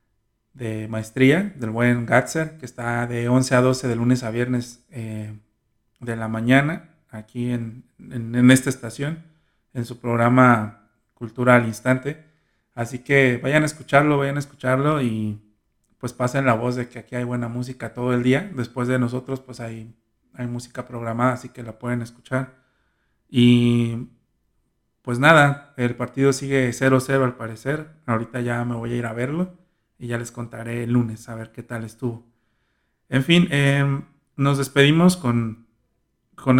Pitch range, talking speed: 115-135 Hz, 165 wpm